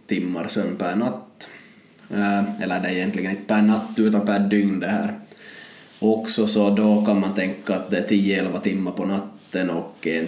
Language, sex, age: Swedish, male, 20-39